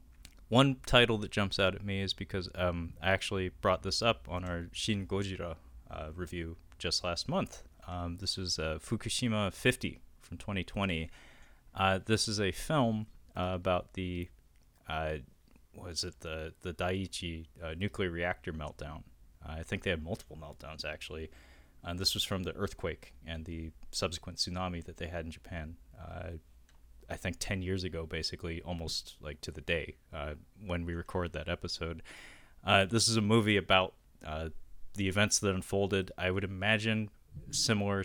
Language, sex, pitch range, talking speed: English, male, 80-100 Hz, 170 wpm